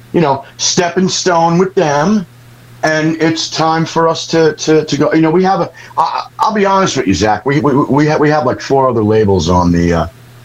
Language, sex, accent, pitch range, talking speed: English, male, American, 115-145 Hz, 230 wpm